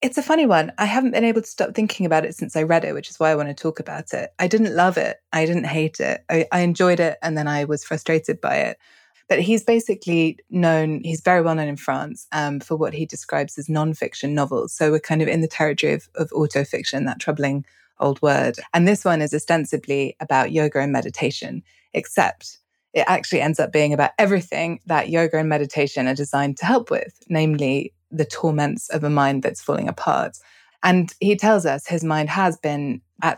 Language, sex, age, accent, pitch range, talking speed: English, female, 20-39, British, 150-170 Hz, 220 wpm